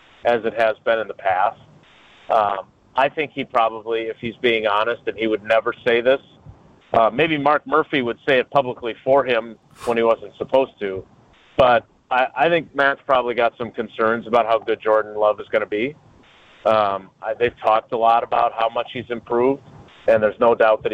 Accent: American